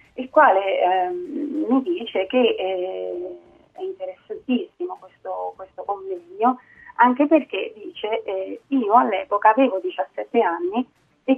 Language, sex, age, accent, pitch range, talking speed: Italian, female, 40-59, native, 210-335 Hz, 115 wpm